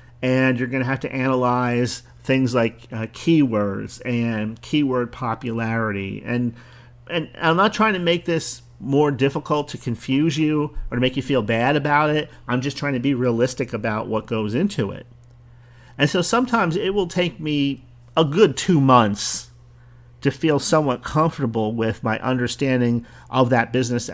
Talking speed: 165 wpm